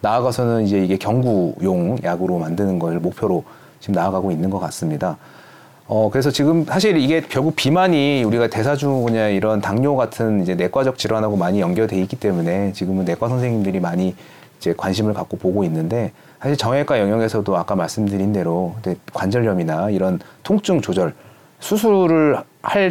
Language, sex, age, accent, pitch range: Korean, male, 30-49, native, 95-135 Hz